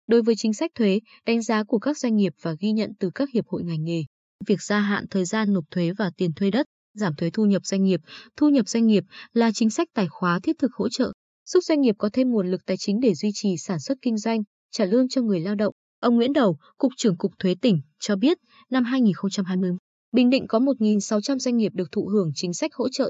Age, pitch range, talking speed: 20-39, 190-245 Hz, 250 wpm